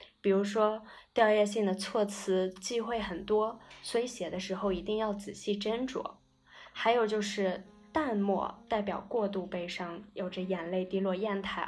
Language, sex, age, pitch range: Chinese, female, 20-39, 185-215 Hz